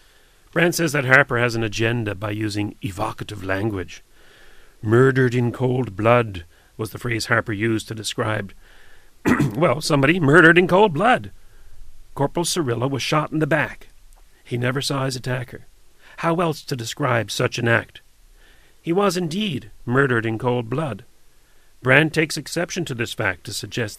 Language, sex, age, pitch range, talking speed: English, male, 40-59, 110-140 Hz, 155 wpm